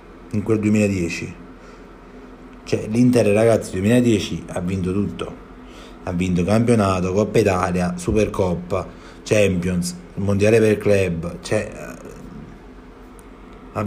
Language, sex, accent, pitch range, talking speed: Italian, male, native, 100-135 Hz, 100 wpm